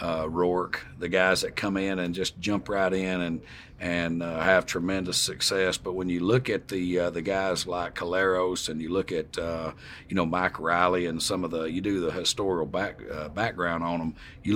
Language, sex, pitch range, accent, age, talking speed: English, male, 85-95 Hz, American, 40-59, 215 wpm